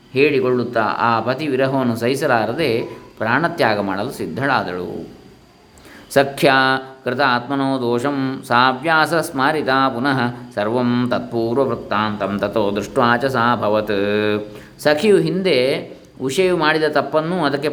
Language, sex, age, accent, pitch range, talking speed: Kannada, male, 20-39, native, 115-150 Hz, 90 wpm